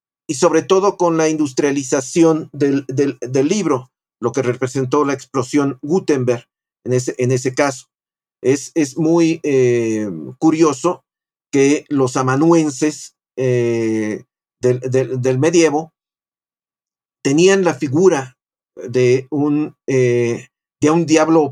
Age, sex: 50-69, male